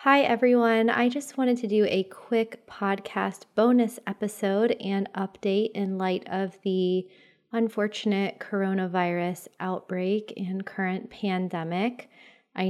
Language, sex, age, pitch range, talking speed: English, female, 20-39, 180-210 Hz, 120 wpm